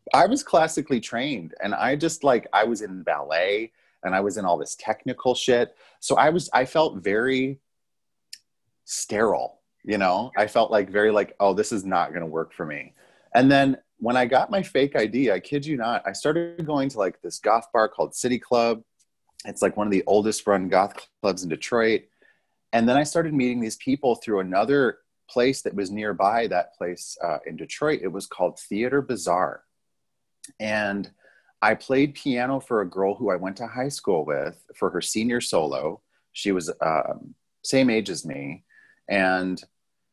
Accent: American